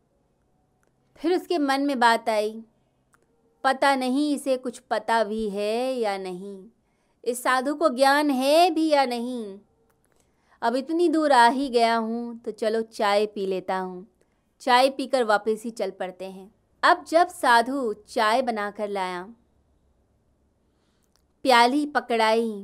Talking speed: 140 wpm